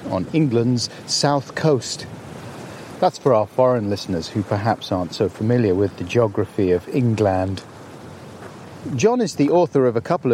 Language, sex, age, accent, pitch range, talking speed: English, male, 40-59, British, 115-155 Hz, 150 wpm